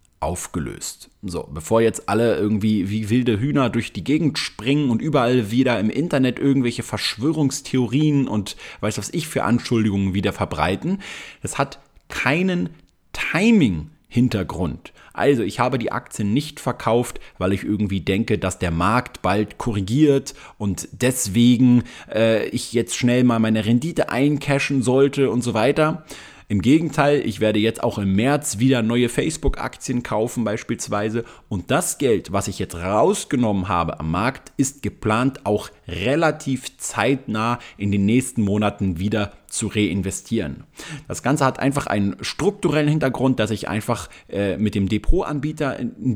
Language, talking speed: German, 145 wpm